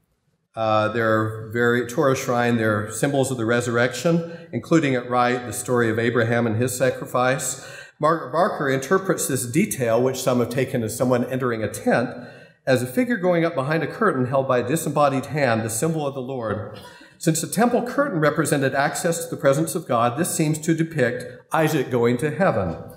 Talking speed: 185 wpm